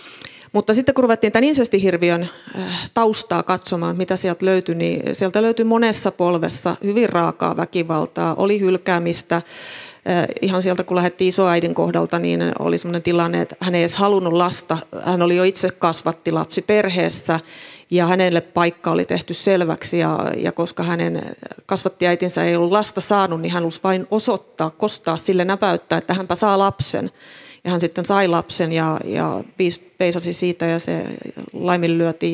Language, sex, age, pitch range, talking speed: Finnish, female, 30-49, 170-200 Hz, 150 wpm